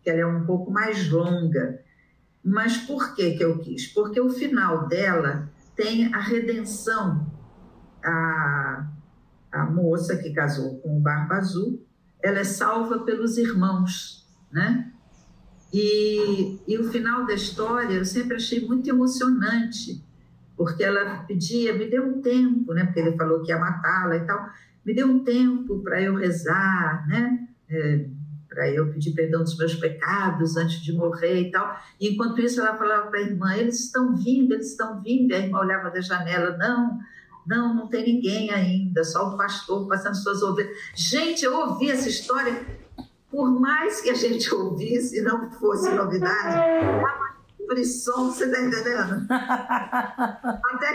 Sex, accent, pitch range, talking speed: female, Brazilian, 175-240 Hz, 155 wpm